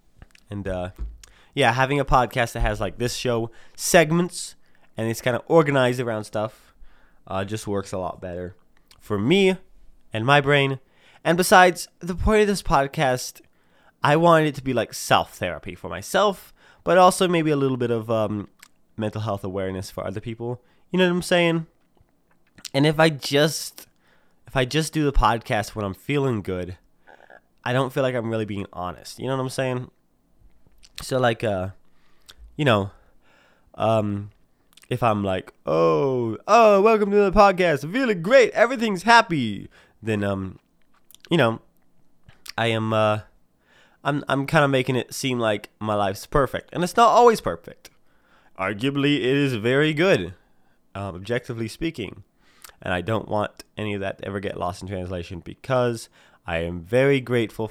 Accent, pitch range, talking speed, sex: American, 100-145 Hz, 165 wpm, male